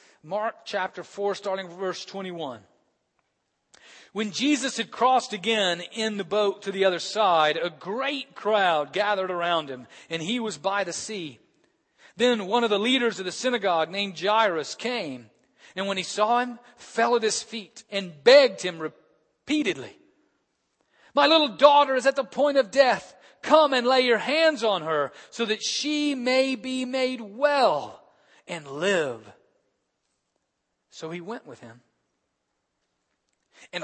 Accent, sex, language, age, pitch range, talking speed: American, male, English, 40-59, 170-240 Hz, 155 wpm